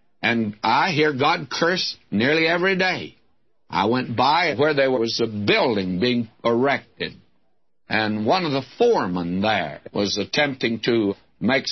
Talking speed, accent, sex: 145 wpm, American, male